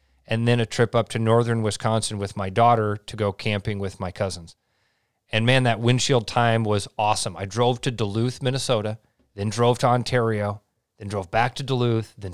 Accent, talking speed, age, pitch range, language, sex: American, 190 wpm, 40-59, 105-125 Hz, English, male